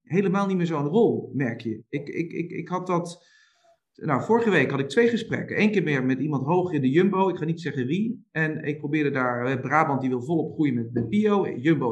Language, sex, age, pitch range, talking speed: Dutch, male, 40-59, 140-190 Hz, 235 wpm